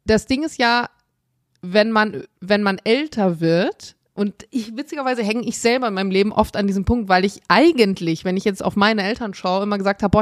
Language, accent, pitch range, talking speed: German, German, 195-240 Hz, 215 wpm